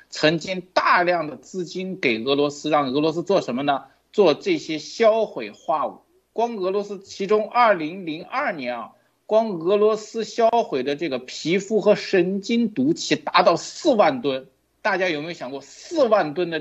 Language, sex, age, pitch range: Chinese, male, 50-69, 155-230 Hz